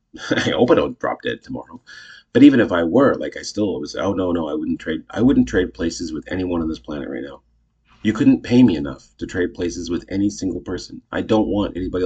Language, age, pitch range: English, 30-49, 85-105 Hz